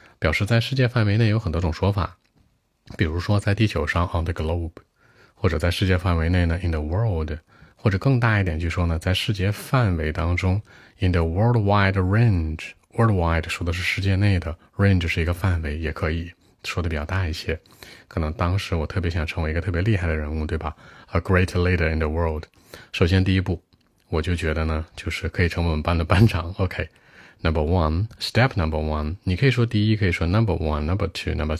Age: 30-49